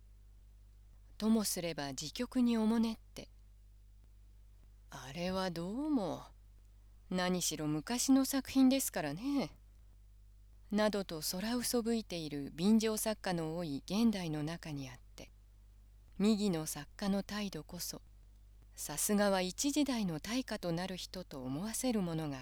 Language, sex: Japanese, female